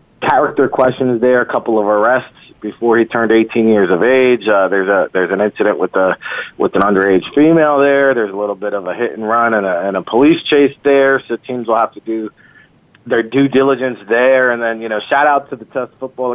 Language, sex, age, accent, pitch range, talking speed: English, male, 40-59, American, 110-130 Hz, 230 wpm